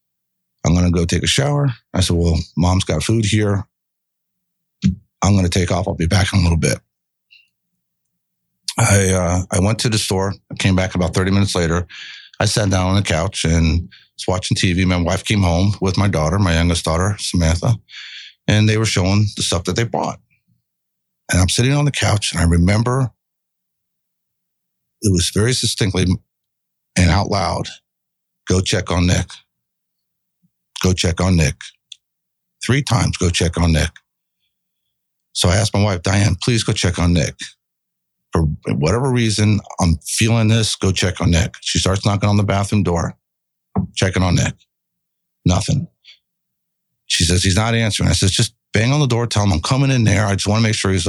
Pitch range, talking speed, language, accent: 90-115 Hz, 185 wpm, English, American